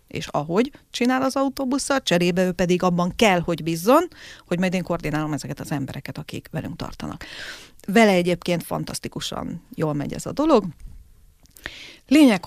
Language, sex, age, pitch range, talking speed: Hungarian, female, 40-59, 165-230 Hz, 150 wpm